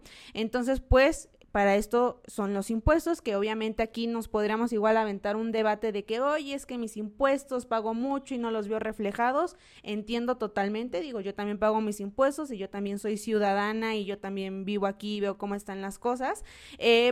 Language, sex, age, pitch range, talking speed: Spanish, female, 20-39, 210-260 Hz, 195 wpm